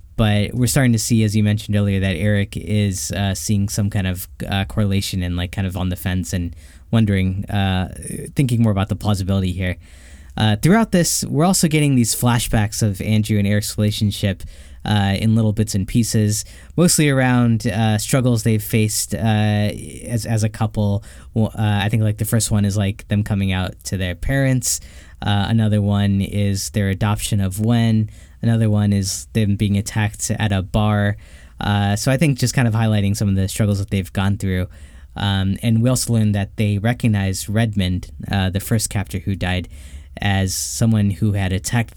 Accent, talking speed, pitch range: American, 190 wpm, 95-115 Hz